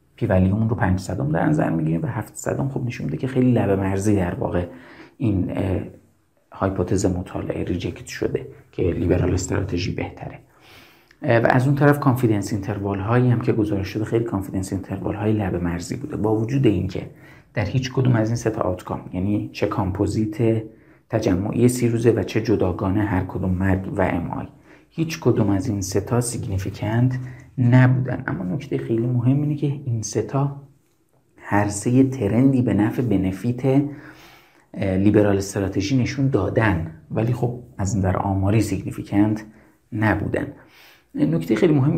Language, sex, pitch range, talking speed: Persian, male, 95-125 Hz, 145 wpm